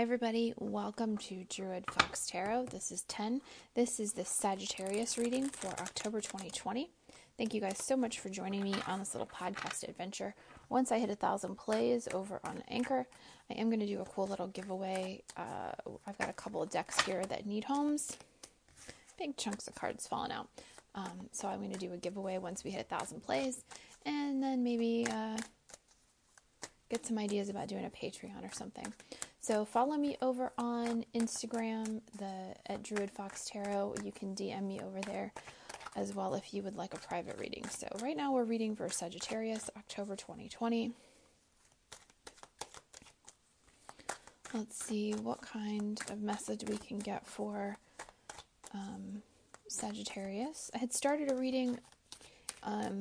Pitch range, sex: 195-240 Hz, female